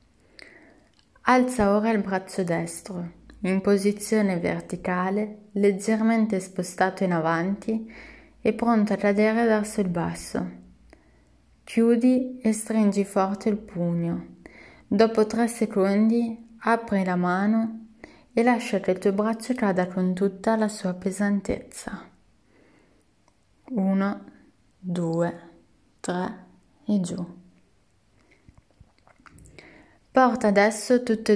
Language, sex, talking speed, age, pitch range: Italian, female, 100 wpm, 20-39, 185-225 Hz